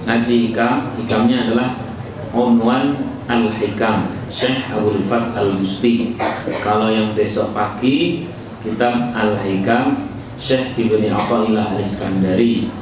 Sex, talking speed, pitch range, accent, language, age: male, 75 wpm, 105-120 Hz, native, Indonesian, 40-59